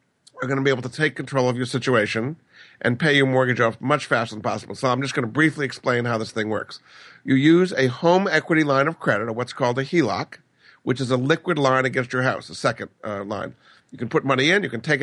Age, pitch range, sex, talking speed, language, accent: 50-69, 130-160 Hz, male, 255 wpm, English, American